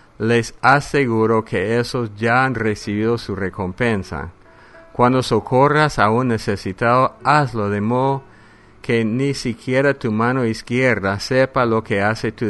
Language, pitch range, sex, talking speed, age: English, 100-125 Hz, male, 135 wpm, 50-69